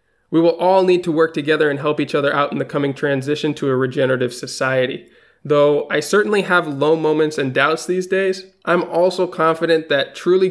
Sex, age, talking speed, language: male, 20-39, 200 wpm, English